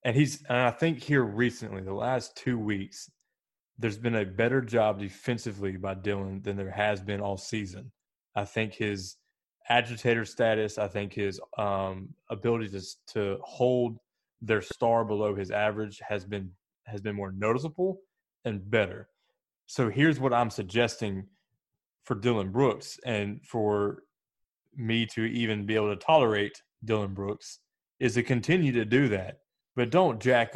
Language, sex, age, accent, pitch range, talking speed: English, male, 20-39, American, 105-120 Hz, 155 wpm